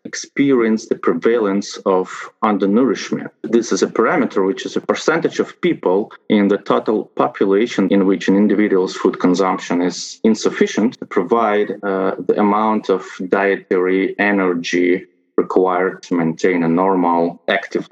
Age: 30-49